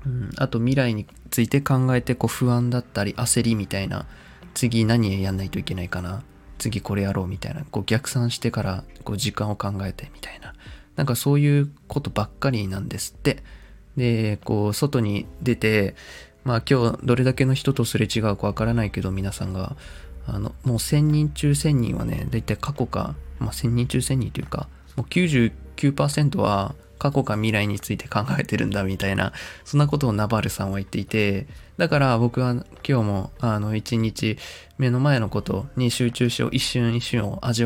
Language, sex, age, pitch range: Japanese, male, 20-39, 100-125 Hz